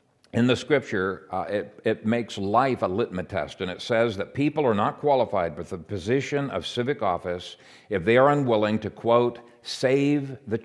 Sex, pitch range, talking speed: male, 90-120 Hz, 185 wpm